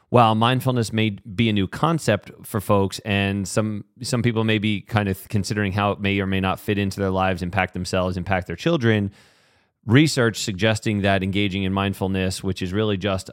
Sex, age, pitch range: male, 30-49, 95-115 Hz